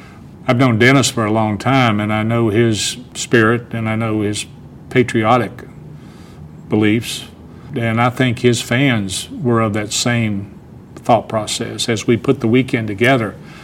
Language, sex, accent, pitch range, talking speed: English, male, American, 105-125 Hz, 155 wpm